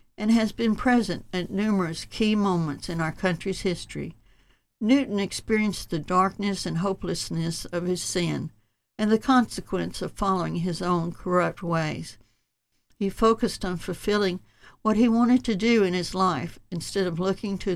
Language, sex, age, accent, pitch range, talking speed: English, female, 60-79, American, 170-210 Hz, 155 wpm